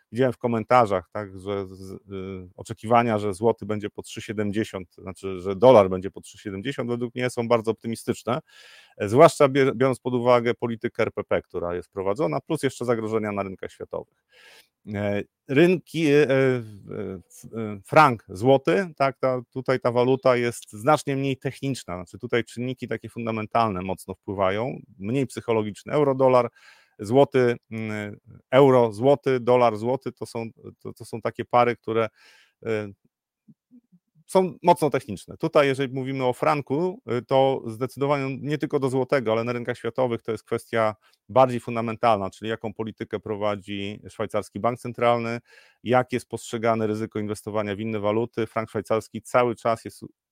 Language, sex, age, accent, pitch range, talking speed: Polish, male, 30-49, native, 105-130 Hz, 145 wpm